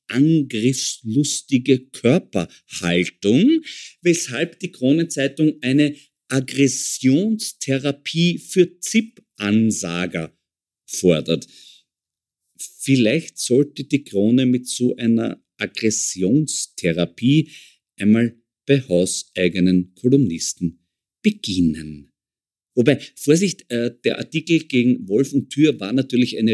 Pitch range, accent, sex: 105-145 Hz, German, male